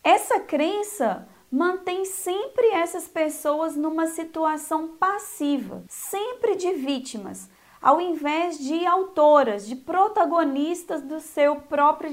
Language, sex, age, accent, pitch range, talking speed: Portuguese, female, 20-39, Brazilian, 290-360 Hz, 105 wpm